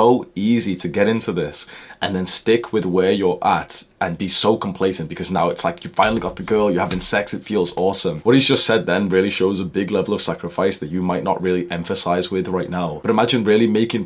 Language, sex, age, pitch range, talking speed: English, male, 20-39, 90-115 Hz, 240 wpm